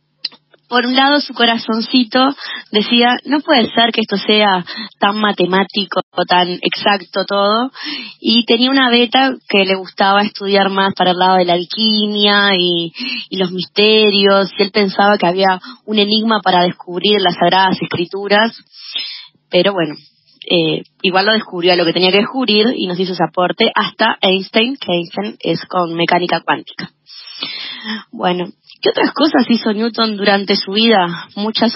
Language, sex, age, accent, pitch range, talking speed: Spanish, female, 20-39, Argentinian, 185-220 Hz, 155 wpm